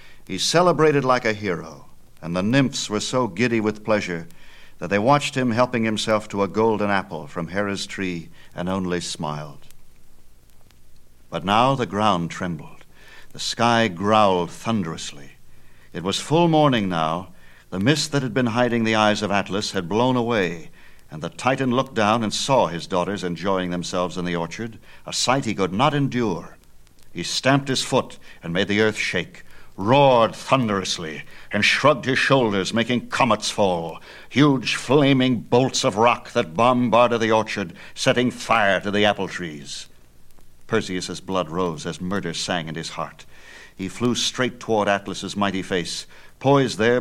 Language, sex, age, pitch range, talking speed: Italian, male, 60-79, 90-120 Hz, 160 wpm